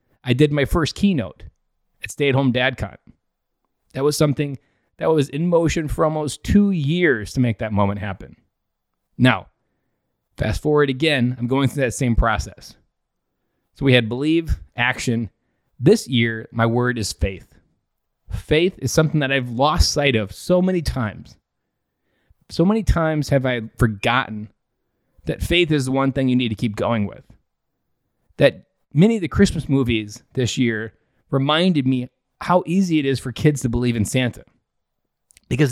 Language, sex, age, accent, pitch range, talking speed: English, male, 20-39, American, 115-150 Hz, 165 wpm